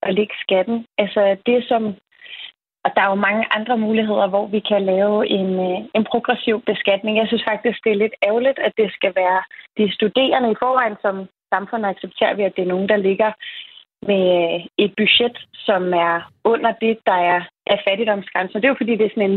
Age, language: 30-49, Danish